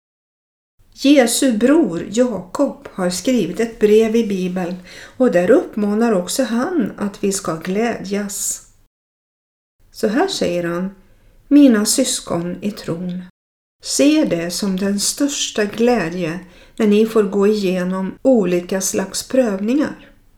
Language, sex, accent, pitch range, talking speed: Swedish, female, native, 180-255 Hz, 115 wpm